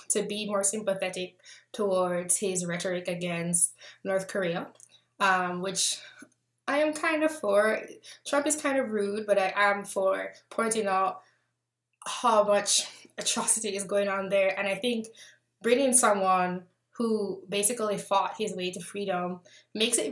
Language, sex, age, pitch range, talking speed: English, female, 10-29, 185-220 Hz, 145 wpm